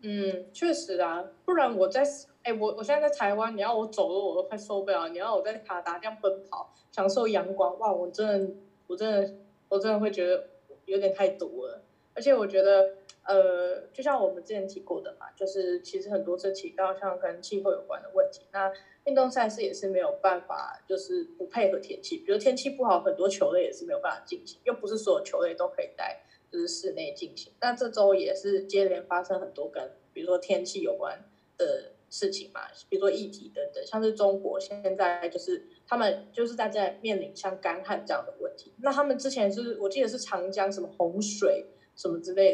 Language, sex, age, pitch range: Chinese, female, 20-39, 190-255 Hz